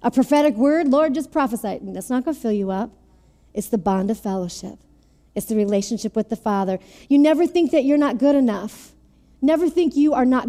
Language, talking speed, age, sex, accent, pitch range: English, 215 wpm, 40-59, female, American, 205-270 Hz